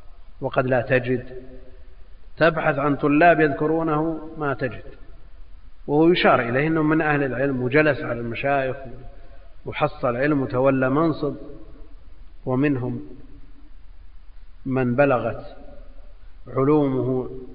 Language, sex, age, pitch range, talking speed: Arabic, male, 50-69, 105-145 Hz, 90 wpm